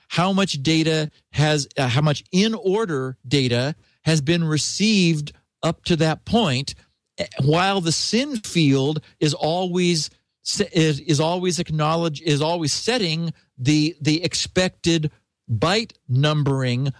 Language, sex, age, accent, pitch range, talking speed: English, male, 50-69, American, 140-175 Hz, 125 wpm